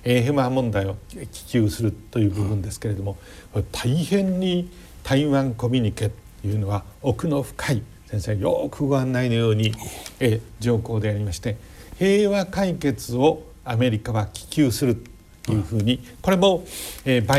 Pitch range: 105-140 Hz